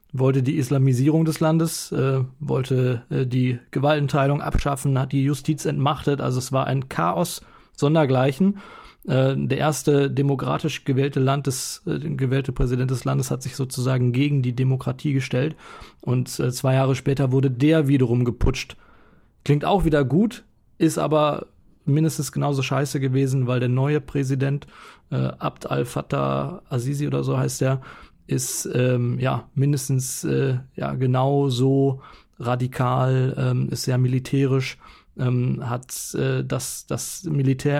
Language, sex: German, male